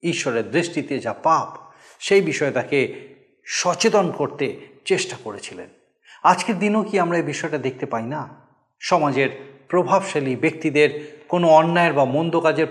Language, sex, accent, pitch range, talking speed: Bengali, male, native, 145-200 Hz, 130 wpm